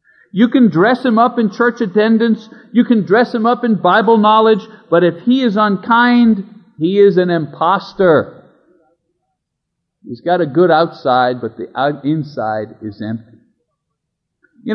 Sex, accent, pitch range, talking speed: male, American, 150-225 Hz, 145 wpm